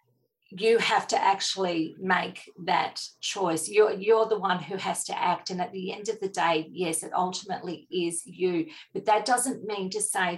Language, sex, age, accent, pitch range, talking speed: English, female, 40-59, Australian, 165-230 Hz, 190 wpm